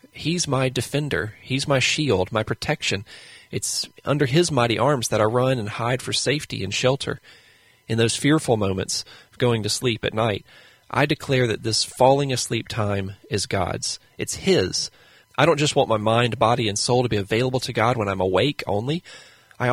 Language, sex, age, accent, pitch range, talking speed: English, male, 30-49, American, 110-135 Hz, 190 wpm